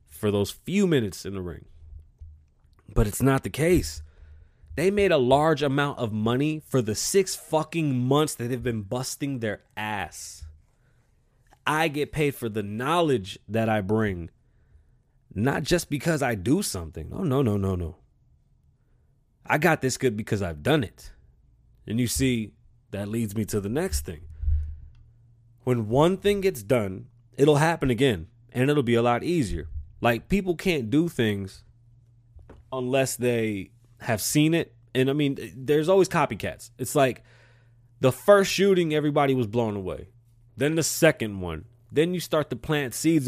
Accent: American